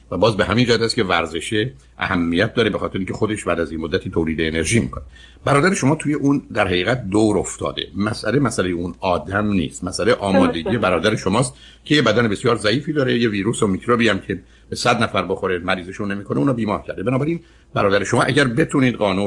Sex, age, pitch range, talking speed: male, 50-69, 90-120 Hz, 200 wpm